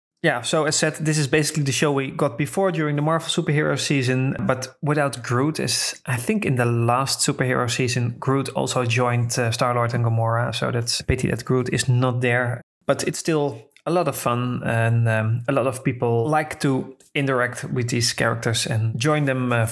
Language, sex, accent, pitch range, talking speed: English, male, Dutch, 125-155 Hz, 205 wpm